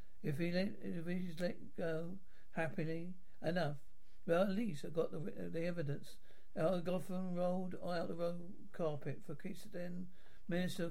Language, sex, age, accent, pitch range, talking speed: English, male, 60-79, British, 160-185 Hz, 155 wpm